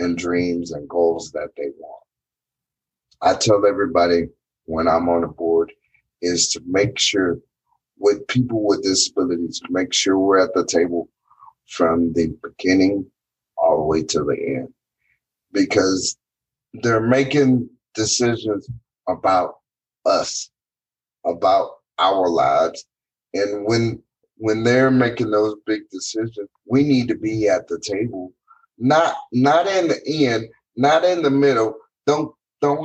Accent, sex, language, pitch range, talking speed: American, male, English, 100-125 Hz, 135 wpm